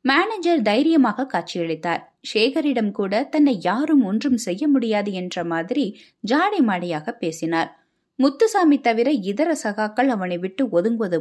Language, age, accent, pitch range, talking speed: Tamil, 20-39, native, 190-270 Hz, 110 wpm